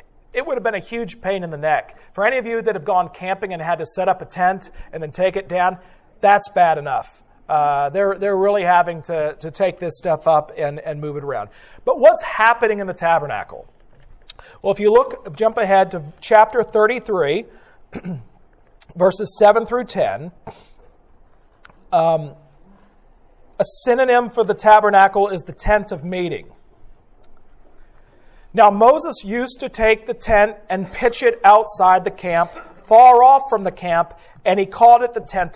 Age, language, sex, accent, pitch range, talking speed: 40-59, English, male, American, 180-235 Hz, 175 wpm